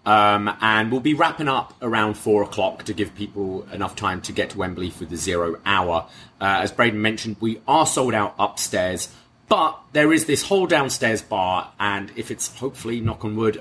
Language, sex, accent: English, male, British